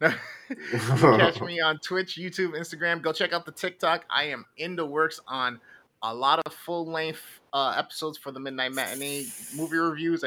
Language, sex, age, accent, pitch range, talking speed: English, male, 30-49, American, 130-160 Hz, 175 wpm